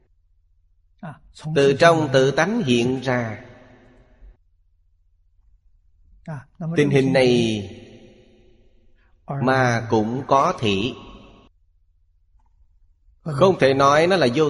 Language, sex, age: Vietnamese, male, 20-39